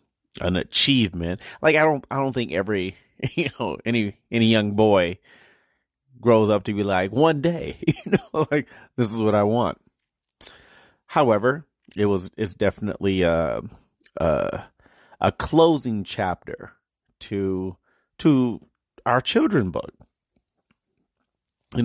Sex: male